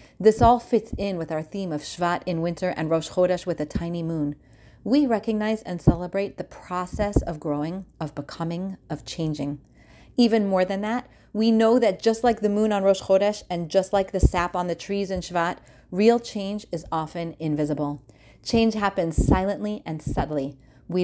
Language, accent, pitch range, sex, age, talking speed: English, American, 165-220 Hz, female, 30-49, 185 wpm